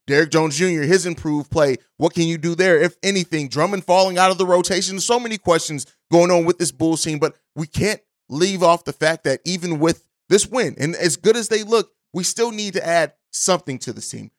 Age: 30-49